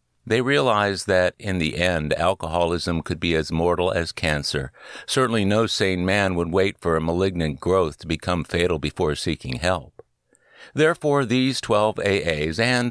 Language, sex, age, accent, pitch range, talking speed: English, male, 60-79, American, 75-110 Hz, 160 wpm